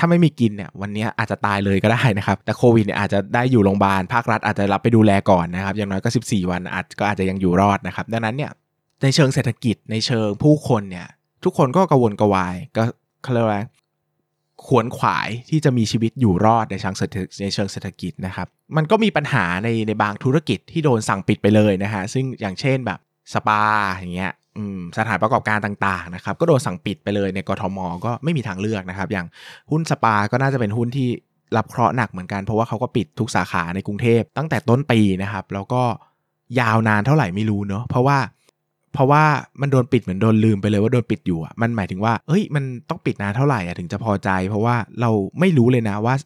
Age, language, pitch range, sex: 20-39, Thai, 100-130 Hz, male